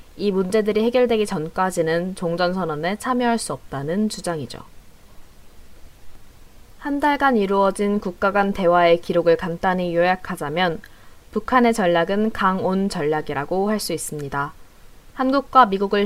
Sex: female